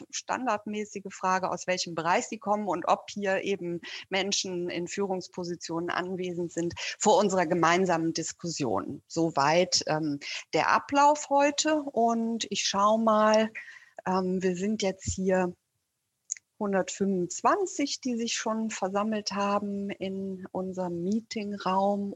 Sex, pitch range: female, 180-215 Hz